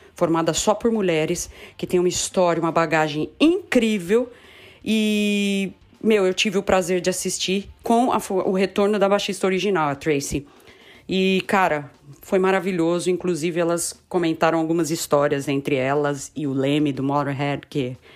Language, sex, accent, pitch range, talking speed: Portuguese, female, Brazilian, 165-210 Hz, 145 wpm